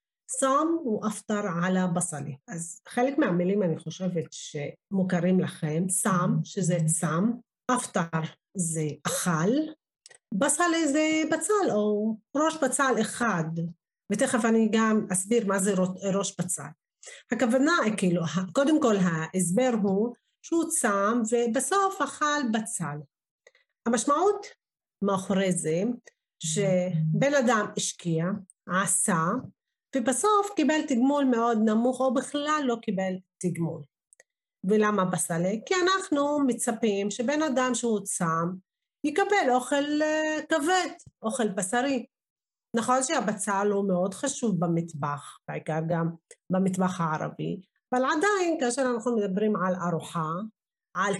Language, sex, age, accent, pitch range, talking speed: Hebrew, female, 40-59, native, 180-255 Hz, 110 wpm